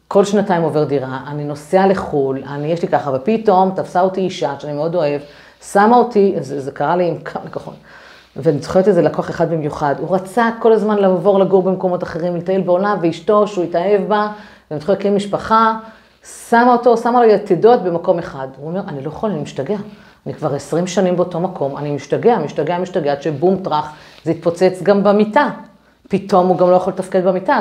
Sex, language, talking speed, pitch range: female, Hebrew, 195 wpm, 155-205 Hz